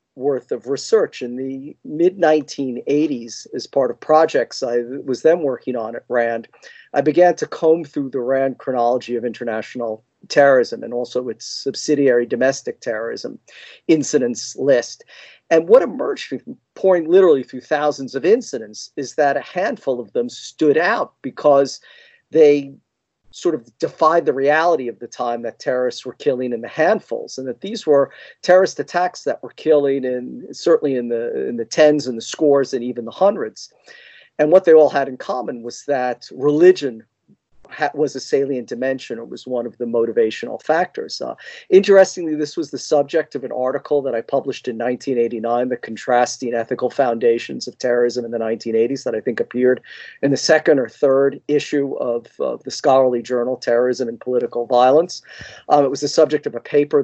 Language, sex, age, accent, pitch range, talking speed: English, male, 50-69, American, 125-150 Hz, 175 wpm